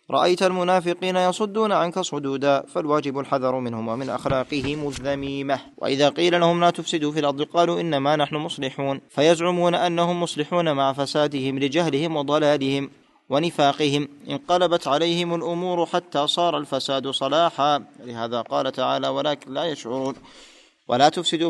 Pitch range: 140-170 Hz